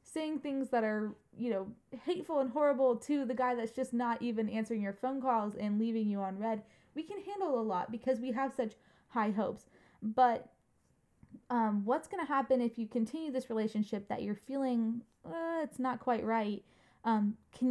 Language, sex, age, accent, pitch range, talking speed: English, female, 20-39, American, 205-245 Hz, 195 wpm